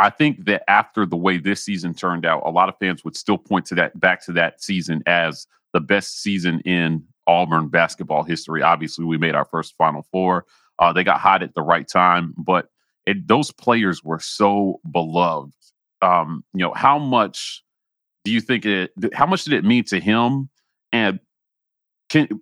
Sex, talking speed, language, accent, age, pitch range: male, 185 wpm, English, American, 30-49, 90-105 Hz